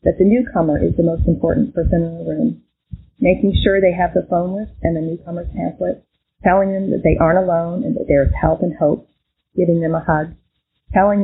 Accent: American